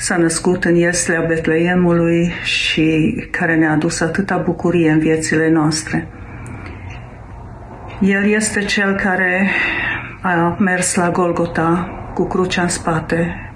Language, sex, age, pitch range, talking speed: Romanian, female, 50-69, 115-175 Hz, 115 wpm